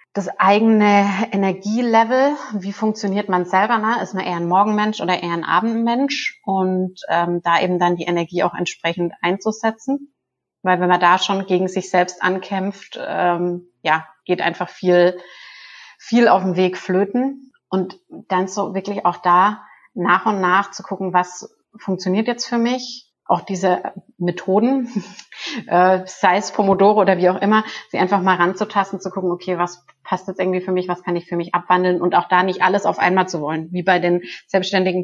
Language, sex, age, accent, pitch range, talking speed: German, female, 30-49, German, 180-200 Hz, 180 wpm